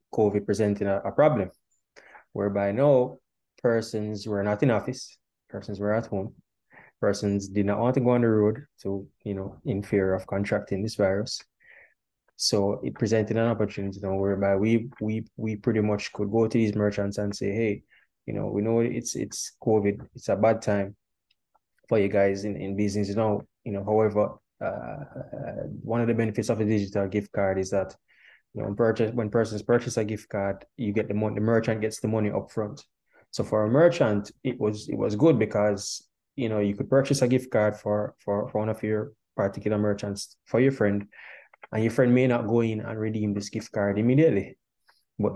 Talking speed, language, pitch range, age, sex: 200 wpm, English, 100-115 Hz, 20-39, male